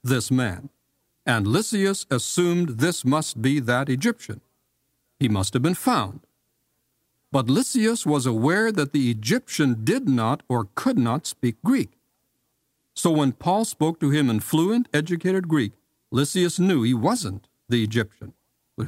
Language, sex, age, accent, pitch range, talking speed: English, male, 60-79, American, 115-160 Hz, 145 wpm